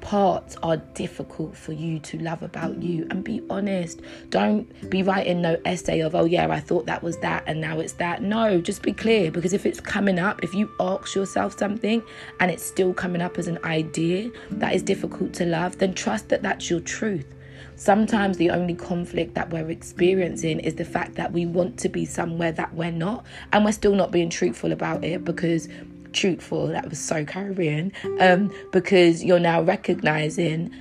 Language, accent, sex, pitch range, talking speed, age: English, British, female, 165-190 Hz, 195 wpm, 20-39